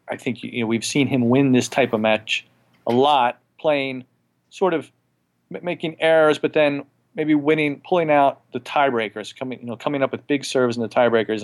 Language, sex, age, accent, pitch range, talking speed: English, male, 40-59, American, 110-135 Hz, 205 wpm